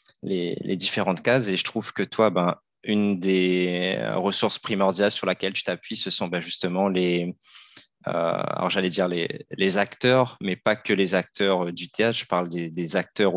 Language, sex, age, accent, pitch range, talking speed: French, male, 20-39, French, 85-100 Hz, 190 wpm